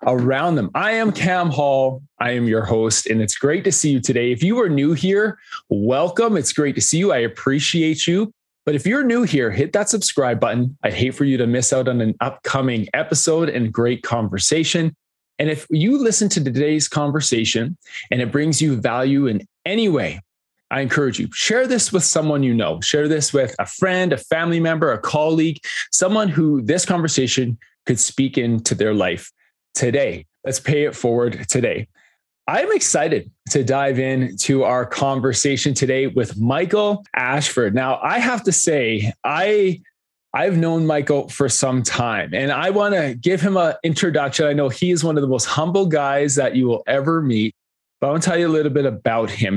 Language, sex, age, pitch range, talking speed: English, male, 20-39, 125-170 Hz, 195 wpm